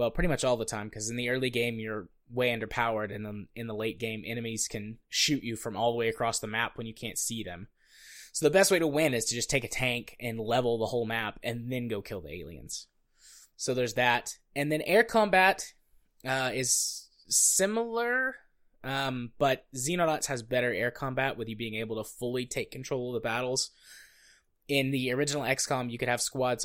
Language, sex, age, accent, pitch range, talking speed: English, male, 20-39, American, 110-140 Hz, 215 wpm